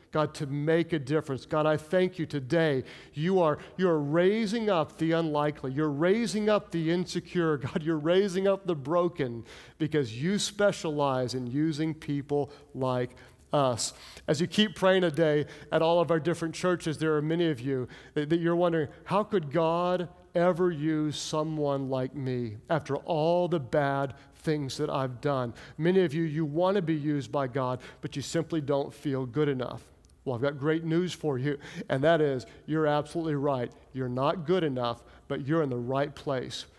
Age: 50-69